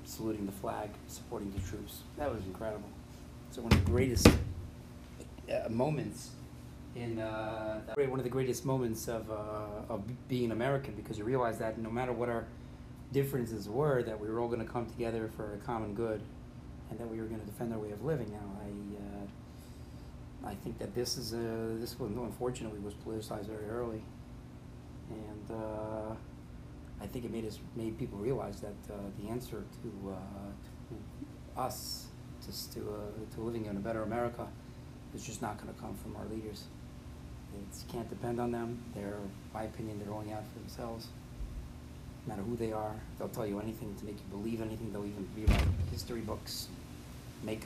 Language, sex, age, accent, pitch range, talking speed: English, male, 40-59, American, 95-115 Hz, 185 wpm